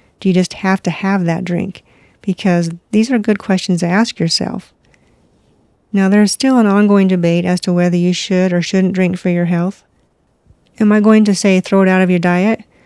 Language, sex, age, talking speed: English, female, 40-59, 205 wpm